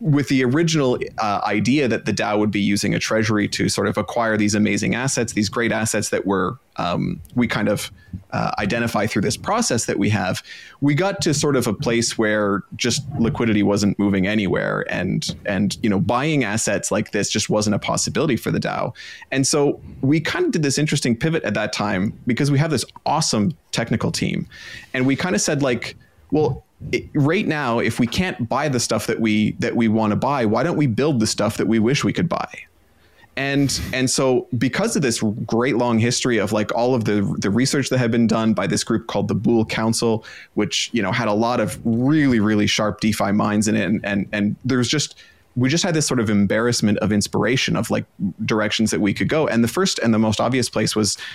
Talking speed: 225 wpm